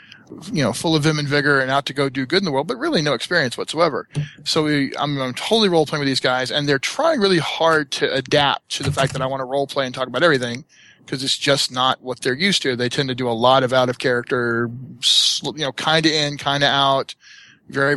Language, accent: English, American